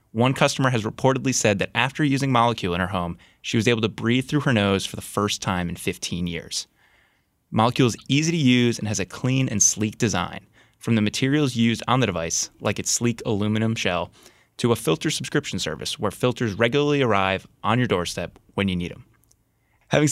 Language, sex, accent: English, male, American